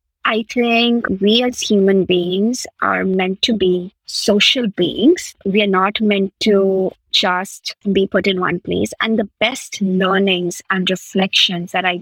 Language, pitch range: English, 185-210 Hz